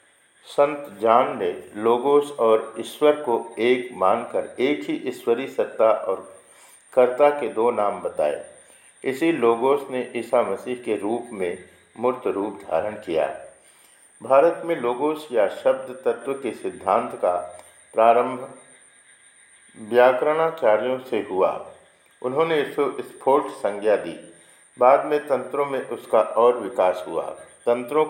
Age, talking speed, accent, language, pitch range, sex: 50-69, 125 wpm, native, Hindi, 115-150 Hz, male